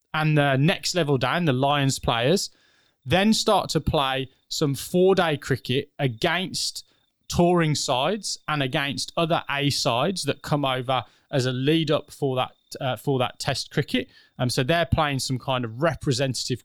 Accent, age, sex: British, 20-39, male